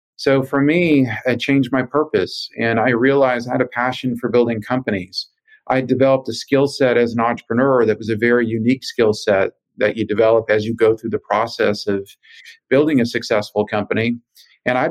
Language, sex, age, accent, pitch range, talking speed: English, male, 40-59, American, 115-135 Hz, 195 wpm